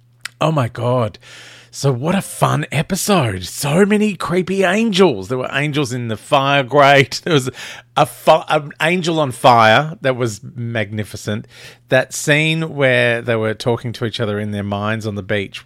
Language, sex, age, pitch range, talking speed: English, male, 40-59, 110-135 Hz, 165 wpm